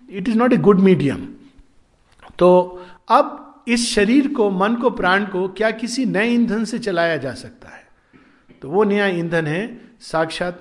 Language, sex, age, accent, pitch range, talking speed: Hindi, male, 50-69, native, 155-230 Hz, 170 wpm